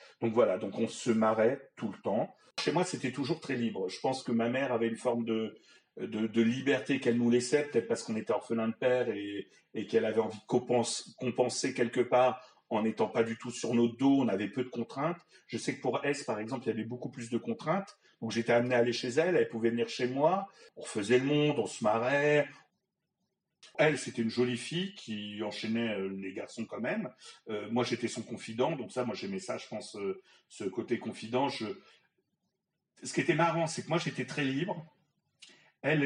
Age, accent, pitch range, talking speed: 40-59, French, 115-145 Hz, 220 wpm